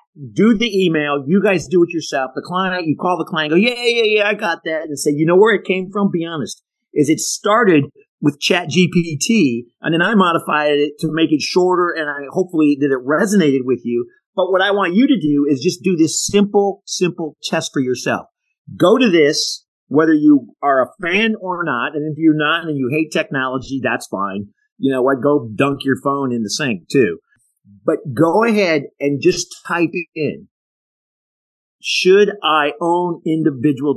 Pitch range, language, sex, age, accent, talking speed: 140-185 Hz, English, male, 50-69, American, 200 wpm